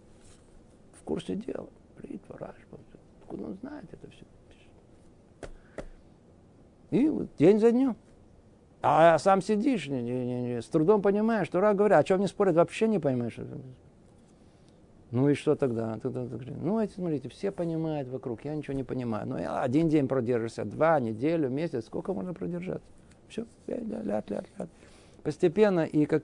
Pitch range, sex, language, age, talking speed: 130-190 Hz, male, Russian, 50-69, 155 wpm